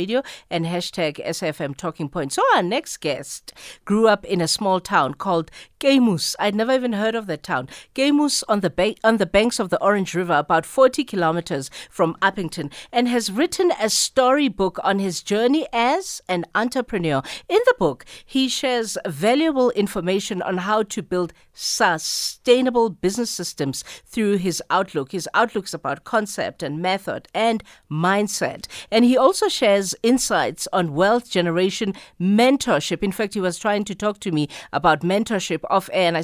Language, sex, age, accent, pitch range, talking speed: English, female, 50-69, South African, 175-240 Hz, 160 wpm